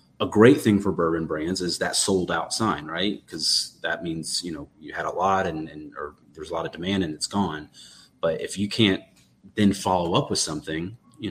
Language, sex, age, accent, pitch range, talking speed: English, male, 30-49, American, 90-105 Hz, 220 wpm